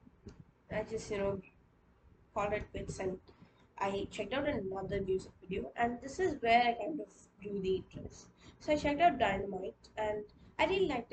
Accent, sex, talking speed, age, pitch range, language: Indian, female, 180 wpm, 20-39, 205-240 Hz, English